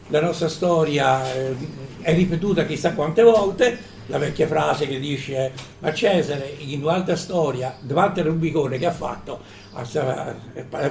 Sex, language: male, Italian